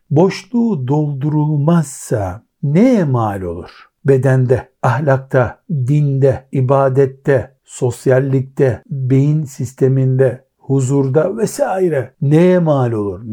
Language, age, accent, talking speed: Turkish, 60-79, native, 75 wpm